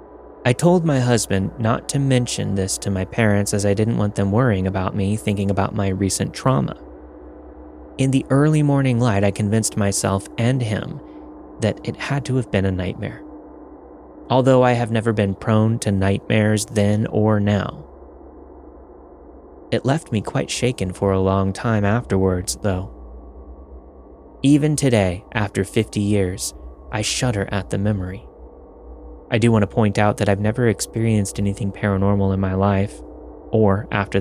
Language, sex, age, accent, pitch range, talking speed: English, male, 20-39, American, 95-120 Hz, 160 wpm